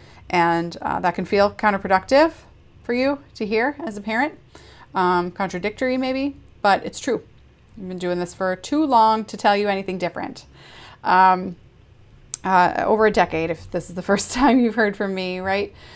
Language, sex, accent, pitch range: English, female, American, 180-225 Hz